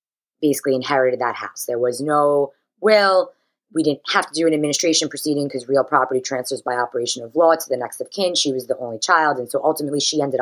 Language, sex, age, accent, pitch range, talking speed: English, female, 20-39, American, 130-165 Hz, 225 wpm